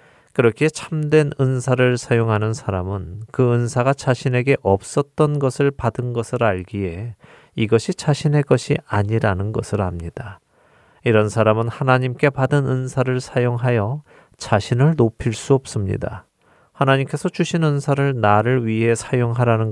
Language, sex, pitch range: Korean, male, 100-130 Hz